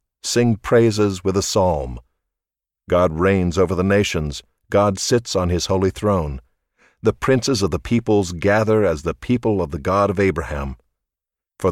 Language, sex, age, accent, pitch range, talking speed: English, male, 50-69, American, 80-105 Hz, 160 wpm